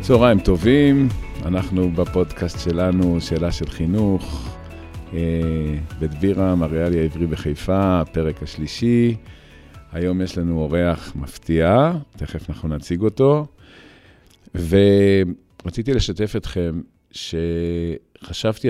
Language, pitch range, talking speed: Hebrew, 80-100 Hz, 90 wpm